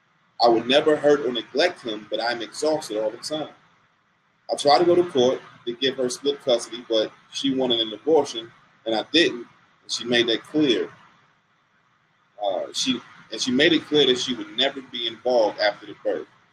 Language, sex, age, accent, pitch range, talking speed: English, male, 30-49, American, 120-165 Hz, 190 wpm